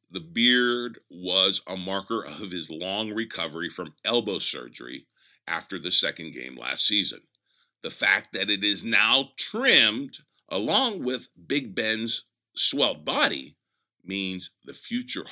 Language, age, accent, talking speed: English, 50-69, American, 135 wpm